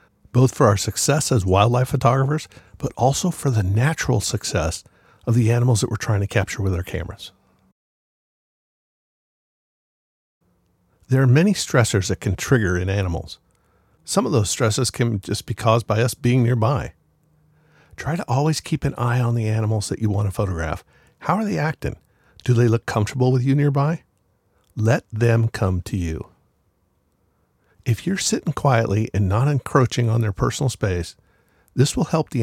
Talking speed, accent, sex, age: 165 wpm, American, male, 50-69